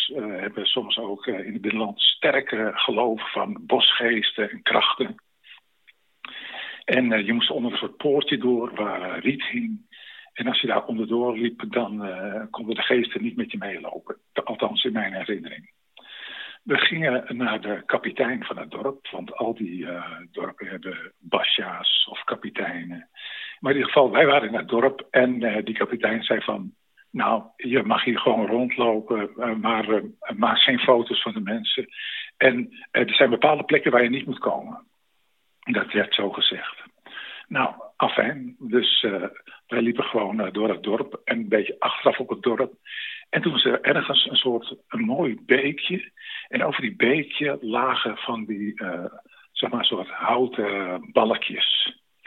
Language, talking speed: Dutch, 165 wpm